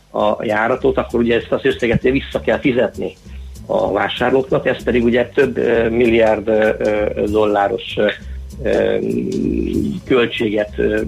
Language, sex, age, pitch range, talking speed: Hungarian, male, 50-69, 100-130 Hz, 105 wpm